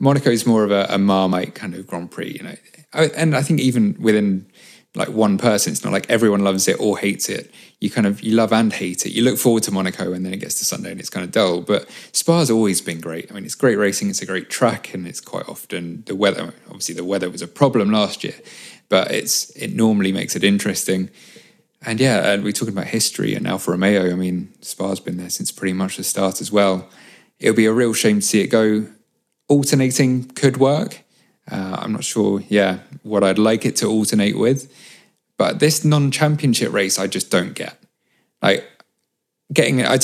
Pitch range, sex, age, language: 95-130 Hz, male, 20-39, English